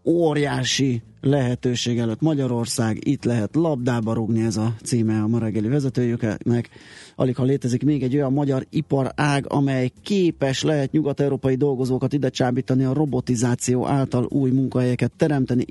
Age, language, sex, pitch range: 30-49, Hungarian, male, 115-135 Hz